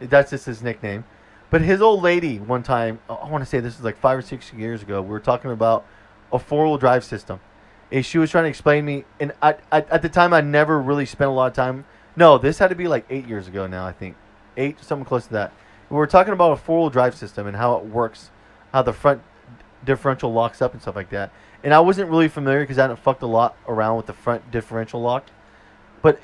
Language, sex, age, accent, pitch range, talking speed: English, male, 20-39, American, 115-160 Hz, 245 wpm